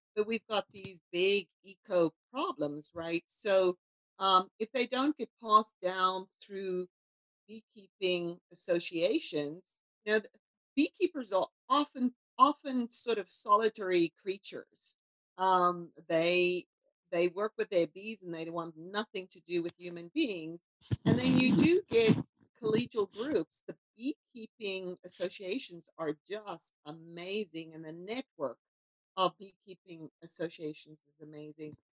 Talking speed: 125 wpm